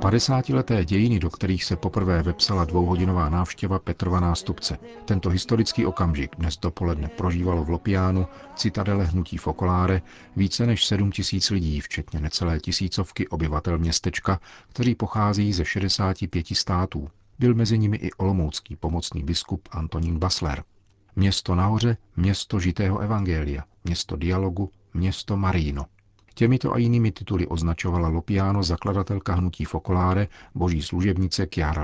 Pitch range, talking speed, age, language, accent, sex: 85-100 Hz, 125 wpm, 40-59, Czech, native, male